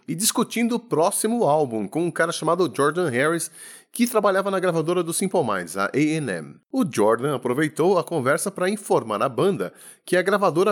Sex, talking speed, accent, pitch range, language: male, 185 wpm, Brazilian, 155-205 Hz, Portuguese